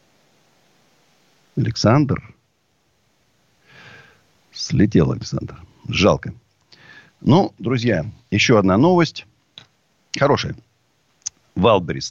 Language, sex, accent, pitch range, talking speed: Russian, male, native, 95-145 Hz, 55 wpm